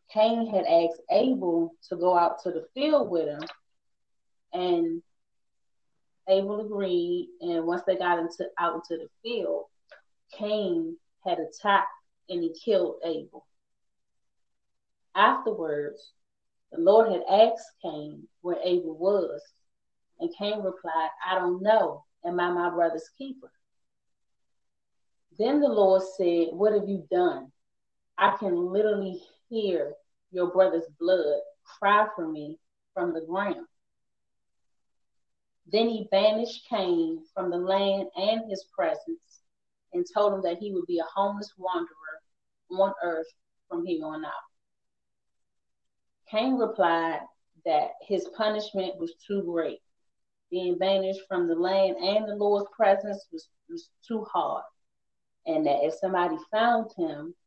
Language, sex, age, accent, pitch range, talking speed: English, female, 30-49, American, 170-220 Hz, 130 wpm